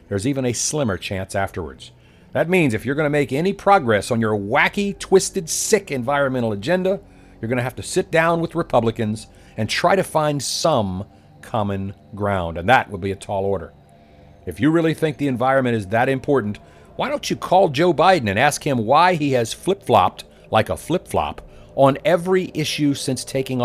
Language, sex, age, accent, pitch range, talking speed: English, male, 50-69, American, 100-145 Hz, 190 wpm